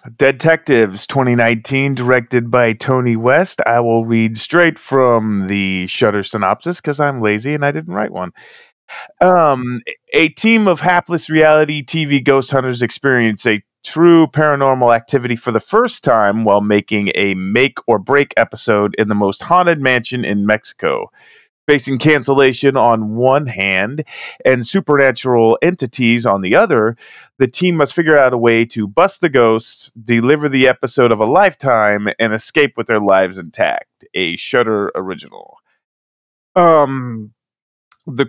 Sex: male